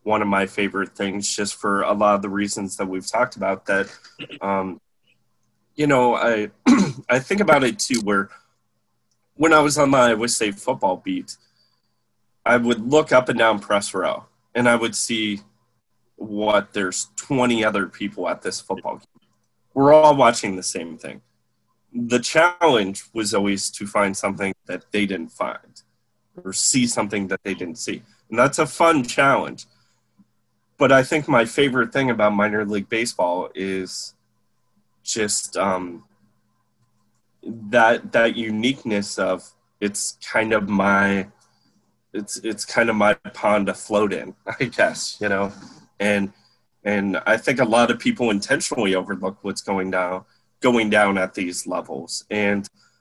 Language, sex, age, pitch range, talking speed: English, male, 20-39, 100-120 Hz, 160 wpm